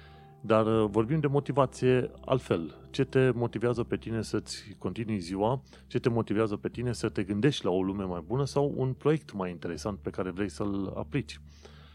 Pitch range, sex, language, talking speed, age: 95-130 Hz, male, Romanian, 185 wpm, 30-49